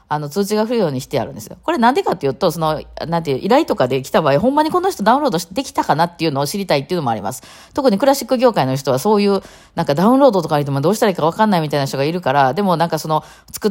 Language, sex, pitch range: Japanese, female, 140-205 Hz